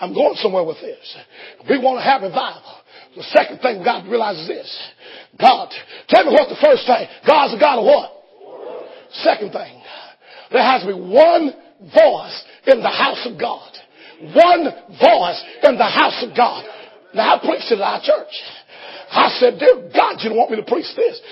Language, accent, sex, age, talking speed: English, American, male, 40-59, 190 wpm